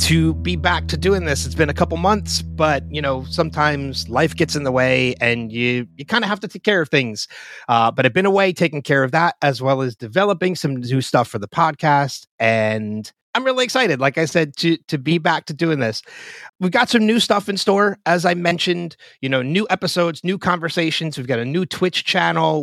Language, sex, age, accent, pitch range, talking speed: English, male, 30-49, American, 130-170 Hz, 230 wpm